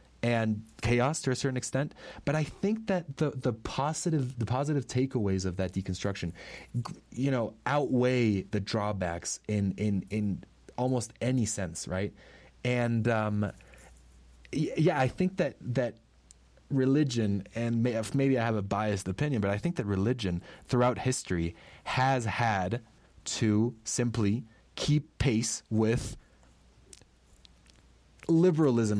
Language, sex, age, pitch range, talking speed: Spanish, male, 30-49, 100-125 Hz, 125 wpm